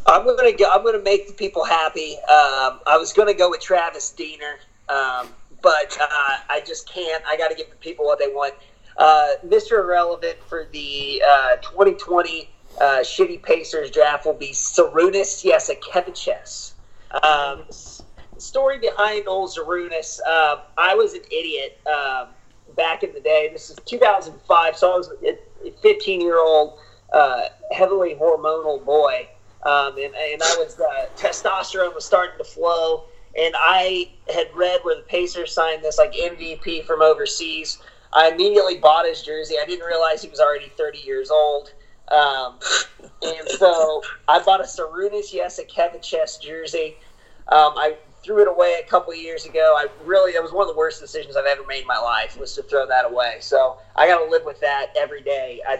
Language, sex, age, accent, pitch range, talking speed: English, male, 30-49, American, 150-255 Hz, 180 wpm